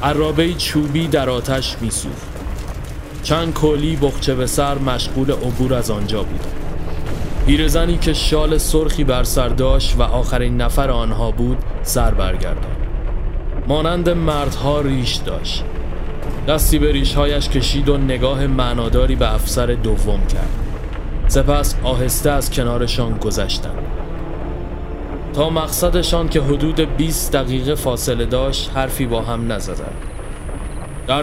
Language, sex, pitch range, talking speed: Persian, male, 100-140 Hz, 120 wpm